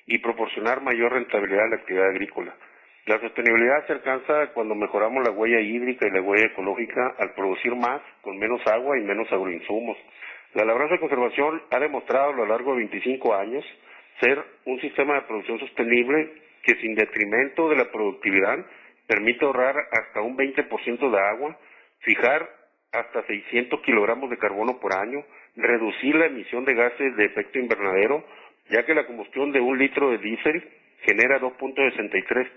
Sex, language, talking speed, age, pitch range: male, Spanish, 160 wpm, 50-69, 115-150 Hz